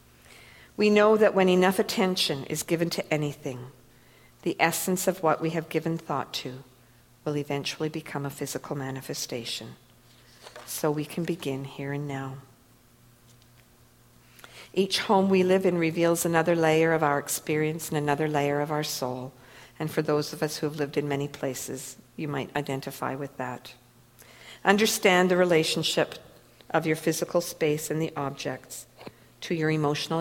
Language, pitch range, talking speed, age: English, 135-175 Hz, 155 wpm, 50-69